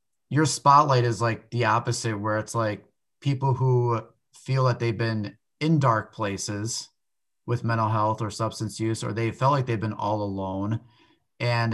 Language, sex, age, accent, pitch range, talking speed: English, male, 30-49, American, 105-125 Hz, 170 wpm